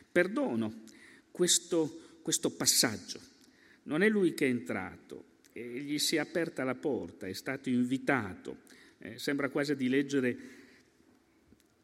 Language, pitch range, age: Italian, 115-195 Hz, 50-69